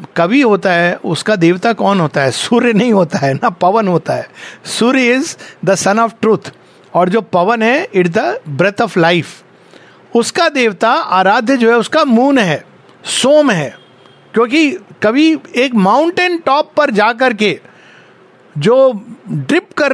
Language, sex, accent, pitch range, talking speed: English, male, Indian, 175-235 Hz, 155 wpm